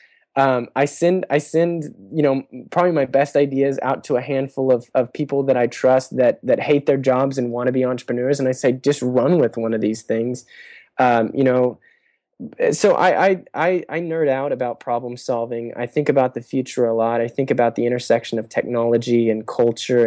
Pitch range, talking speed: 115-135 Hz, 210 wpm